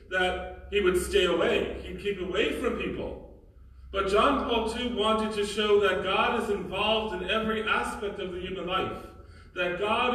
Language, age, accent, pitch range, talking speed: English, 40-59, American, 155-215 Hz, 175 wpm